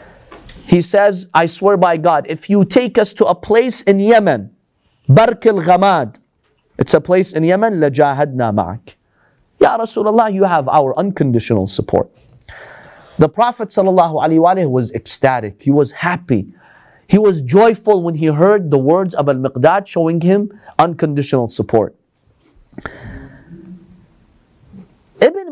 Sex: male